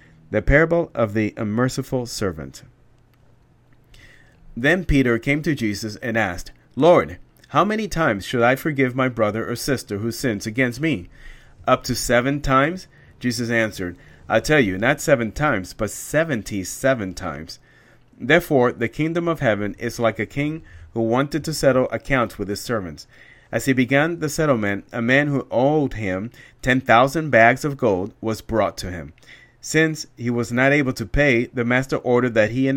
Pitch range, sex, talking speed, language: 110-140 Hz, male, 170 wpm, English